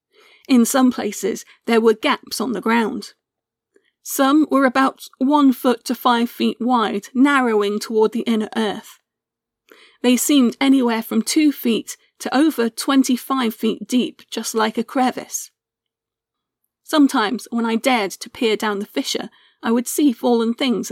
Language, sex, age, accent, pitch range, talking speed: English, female, 40-59, British, 225-260 Hz, 150 wpm